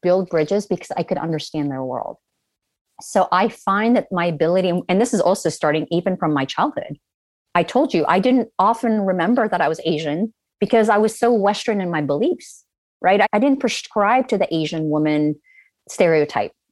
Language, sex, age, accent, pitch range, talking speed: English, female, 30-49, American, 155-200 Hz, 185 wpm